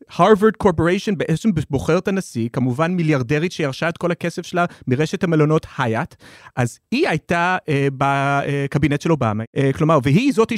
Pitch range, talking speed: 140-225 Hz, 155 wpm